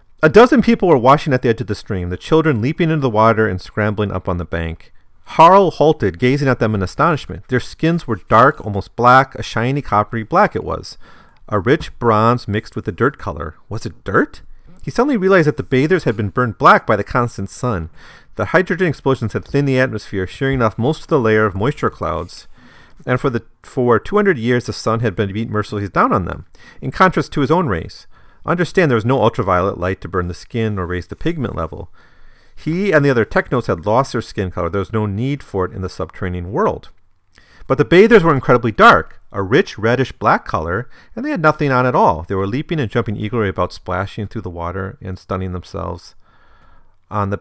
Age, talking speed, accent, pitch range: 40-59, 220 wpm, American, 95-140 Hz